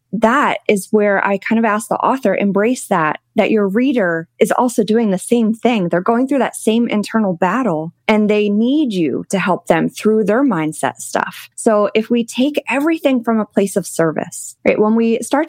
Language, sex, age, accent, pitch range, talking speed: English, female, 20-39, American, 180-225 Hz, 200 wpm